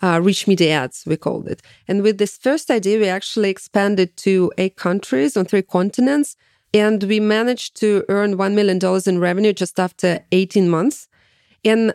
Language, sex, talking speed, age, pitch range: French, female, 175 wpm, 30-49, 180-210 Hz